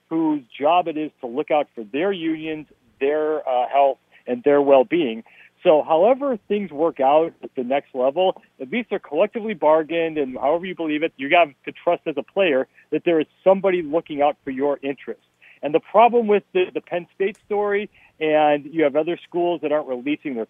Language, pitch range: English, 140-175 Hz